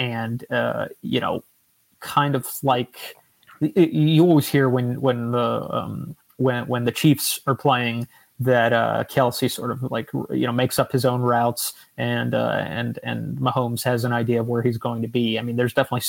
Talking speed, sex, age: 190 wpm, male, 30-49